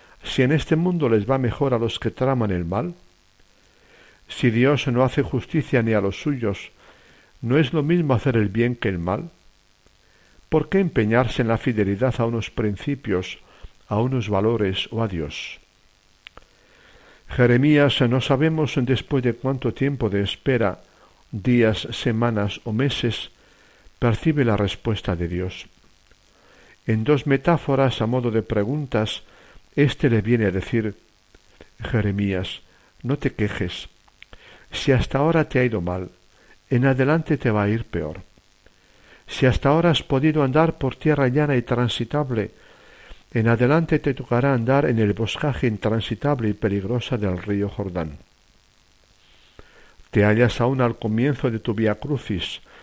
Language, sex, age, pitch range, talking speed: Spanish, male, 60-79, 100-135 Hz, 145 wpm